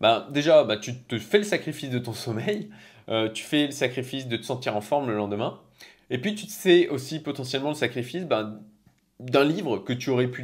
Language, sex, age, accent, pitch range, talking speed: French, male, 20-39, French, 120-150 Hz, 225 wpm